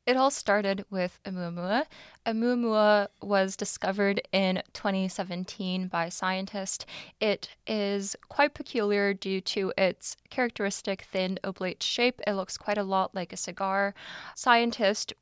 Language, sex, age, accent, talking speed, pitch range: English, female, 10-29, American, 125 wpm, 190-225 Hz